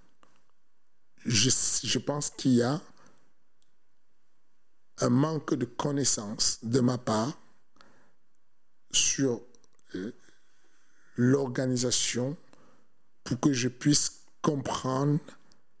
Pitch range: 125-145 Hz